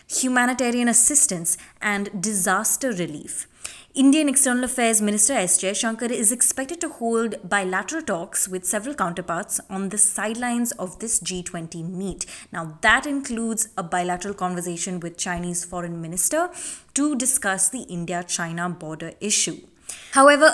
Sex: female